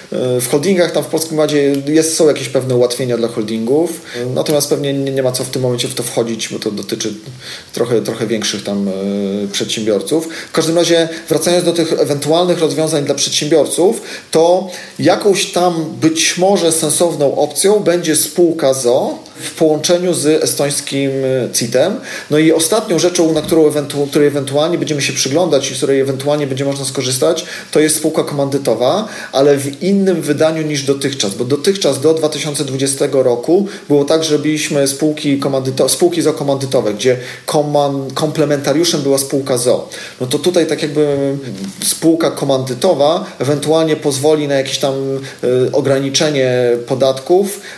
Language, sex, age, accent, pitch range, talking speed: Polish, male, 40-59, native, 135-160 Hz, 155 wpm